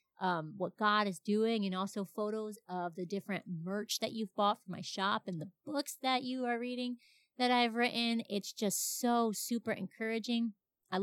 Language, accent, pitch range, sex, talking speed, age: English, American, 190-230 Hz, female, 185 wpm, 30-49